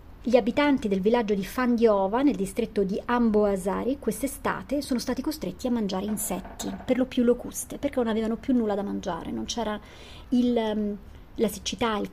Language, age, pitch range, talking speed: Italian, 40-59, 215-255 Hz, 170 wpm